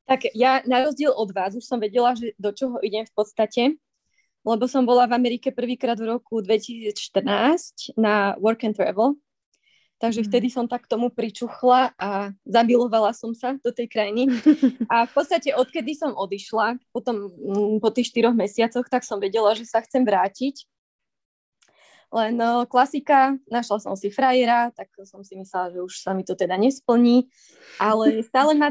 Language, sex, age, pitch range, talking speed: Czech, female, 20-39, 210-250 Hz, 170 wpm